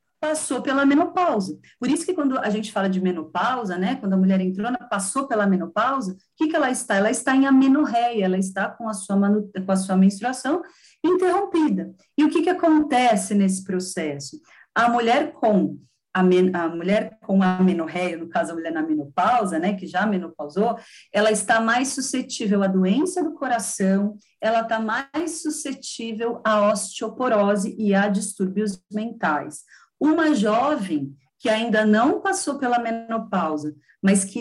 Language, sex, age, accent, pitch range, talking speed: Portuguese, female, 40-59, Brazilian, 190-265 Hz, 160 wpm